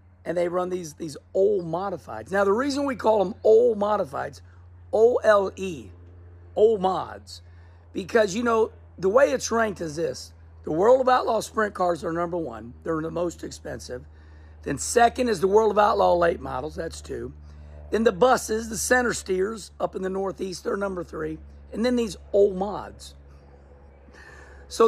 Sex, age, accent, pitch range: male, 50-69, American, 160-225 Hz